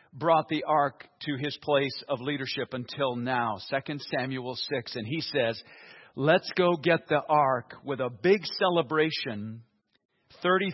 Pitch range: 130-170 Hz